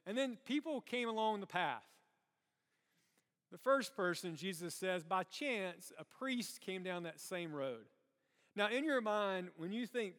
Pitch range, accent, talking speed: 160-210 Hz, American, 165 wpm